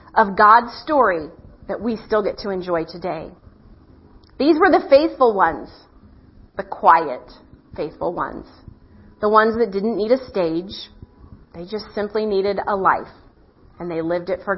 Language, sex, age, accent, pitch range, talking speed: English, female, 30-49, American, 195-250 Hz, 150 wpm